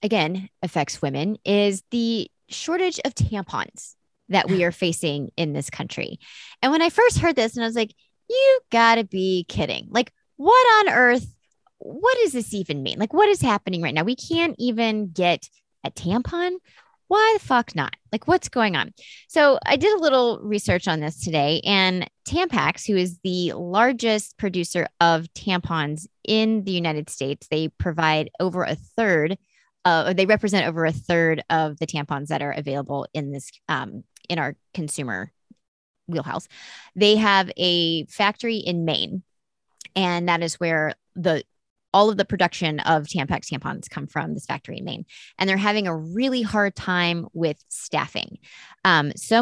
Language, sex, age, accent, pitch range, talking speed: English, female, 20-39, American, 165-230 Hz, 170 wpm